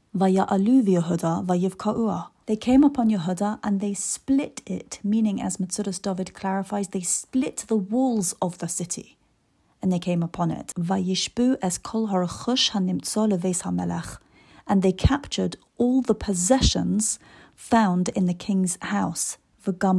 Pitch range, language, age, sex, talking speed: 180-220 Hz, English, 30-49, female, 110 wpm